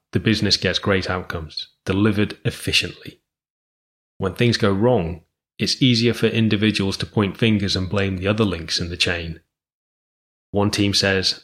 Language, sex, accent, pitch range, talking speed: English, male, British, 90-110 Hz, 150 wpm